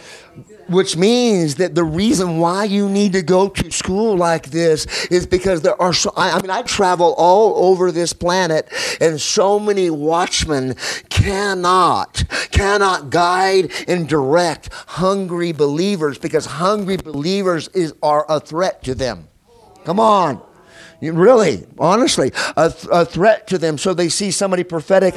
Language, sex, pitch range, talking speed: English, male, 155-190 Hz, 145 wpm